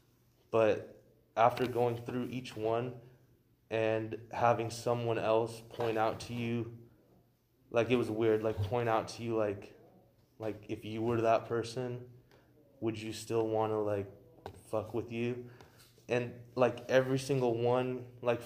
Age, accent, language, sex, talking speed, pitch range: 20-39, American, English, male, 145 wpm, 110-120 Hz